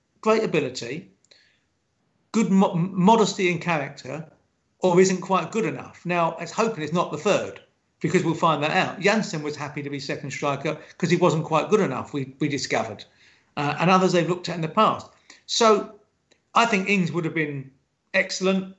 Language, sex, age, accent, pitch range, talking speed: English, male, 40-59, British, 150-185 Hz, 180 wpm